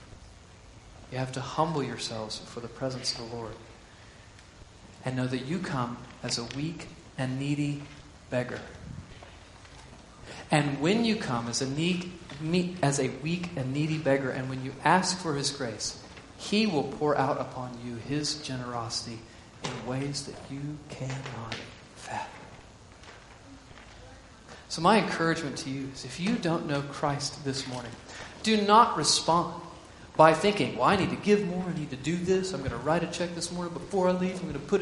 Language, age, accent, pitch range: English, 40-59, American, 120-165 Hz